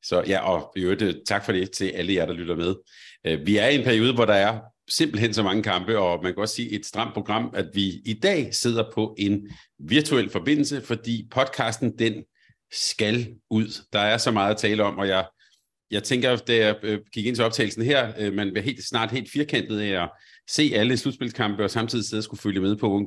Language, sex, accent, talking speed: Danish, male, native, 225 wpm